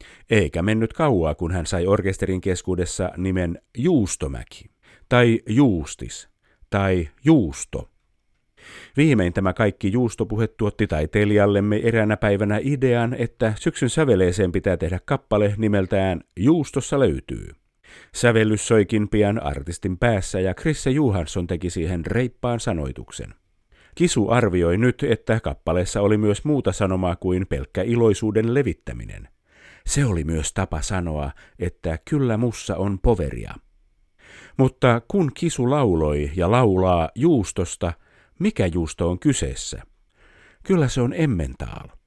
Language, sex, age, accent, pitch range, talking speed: Finnish, male, 50-69, native, 90-120 Hz, 115 wpm